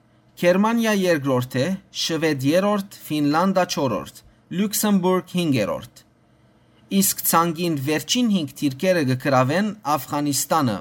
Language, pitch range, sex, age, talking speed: English, 140-210 Hz, male, 30-49, 60 wpm